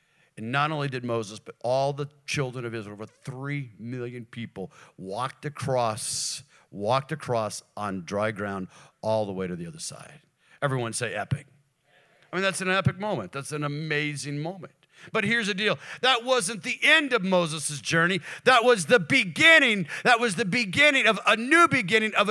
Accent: American